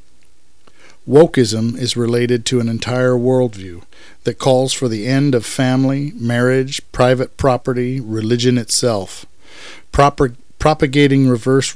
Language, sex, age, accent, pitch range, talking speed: English, male, 50-69, American, 115-130 Hz, 105 wpm